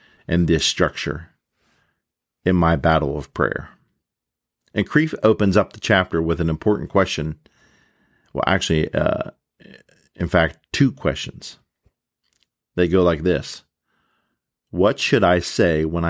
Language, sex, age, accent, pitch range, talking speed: English, male, 50-69, American, 80-100 Hz, 125 wpm